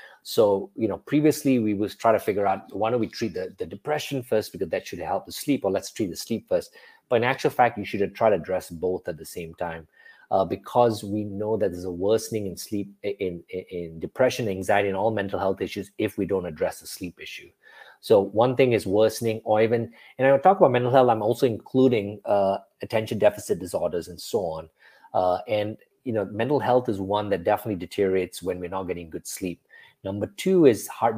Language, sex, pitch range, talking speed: English, male, 95-120 Hz, 225 wpm